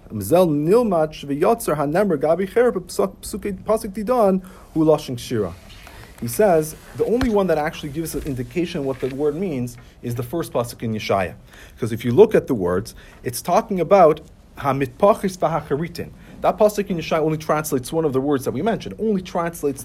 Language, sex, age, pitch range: English, male, 40-59, 120-175 Hz